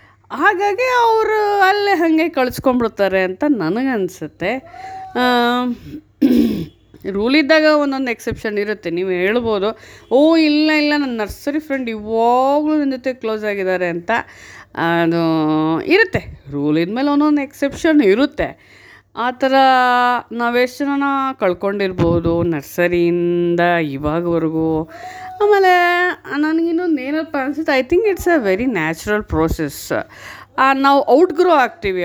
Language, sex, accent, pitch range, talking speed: Kannada, female, native, 185-300 Hz, 100 wpm